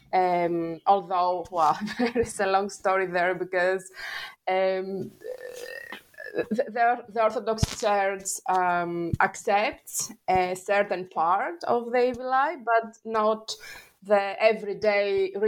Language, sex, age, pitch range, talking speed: English, female, 20-39, 185-250 Hz, 110 wpm